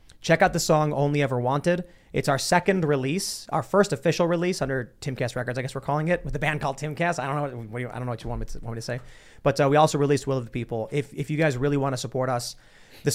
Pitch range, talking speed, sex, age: 130-165 Hz, 275 wpm, male, 30-49